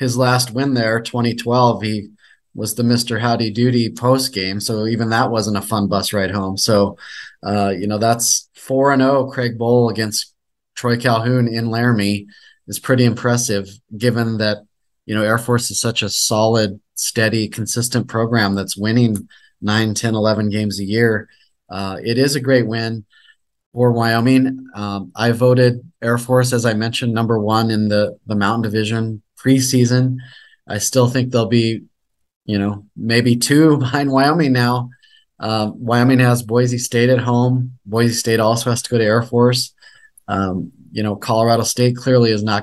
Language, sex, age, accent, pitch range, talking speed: English, male, 30-49, American, 105-125 Hz, 170 wpm